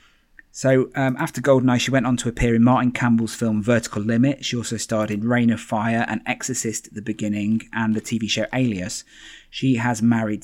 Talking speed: 200 wpm